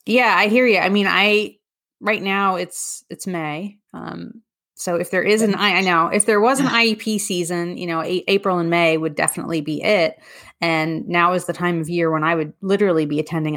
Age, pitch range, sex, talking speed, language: 30-49, 165-205 Hz, female, 220 wpm, English